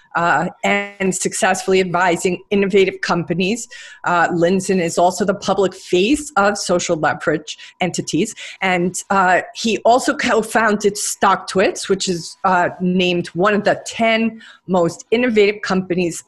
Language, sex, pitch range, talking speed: English, female, 175-205 Hz, 125 wpm